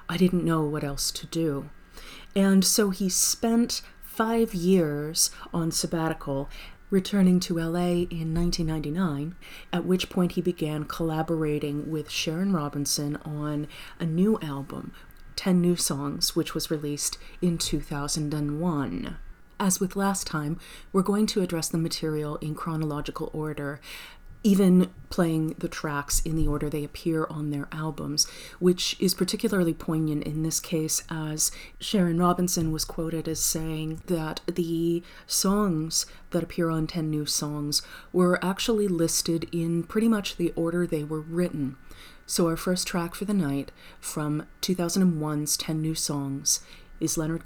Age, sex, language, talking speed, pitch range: 30-49, female, English, 145 wpm, 150-180 Hz